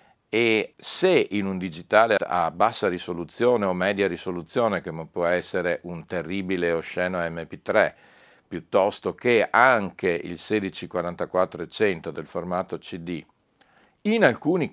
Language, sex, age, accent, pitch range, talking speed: Italian, male, 50-69, native, 80-95 Hz, 125 wpm